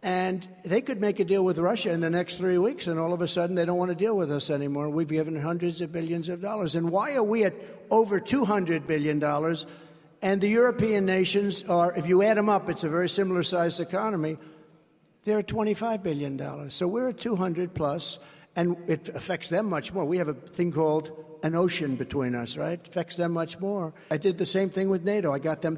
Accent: American